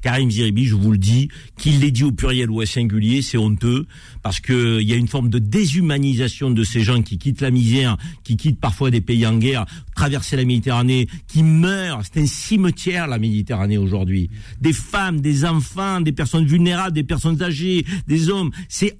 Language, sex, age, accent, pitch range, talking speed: French, male, 50-69, French, 125-175 Hz, 195 wpm